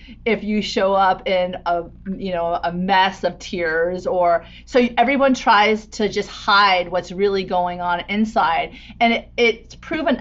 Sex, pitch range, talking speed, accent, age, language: female, 175-215 Hz, 165 wpm, American, 30-49, English